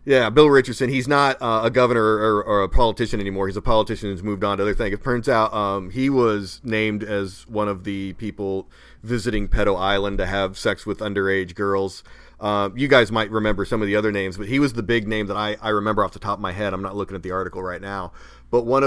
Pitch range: 100-125 Hz